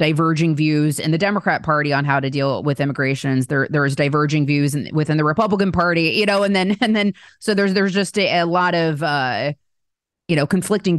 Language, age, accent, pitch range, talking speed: English, 20-39, American, 140-165 Hz, 215 wpm